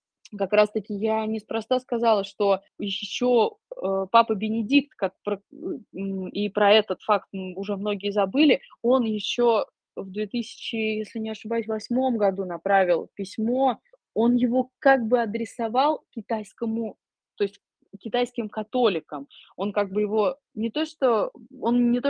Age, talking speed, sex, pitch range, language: 20-39, 115 wpm, female, 185-235 Hz, Russian